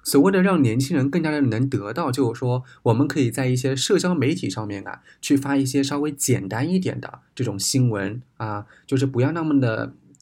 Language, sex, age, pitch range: Chinese, male, 20-39, 110-140 Hz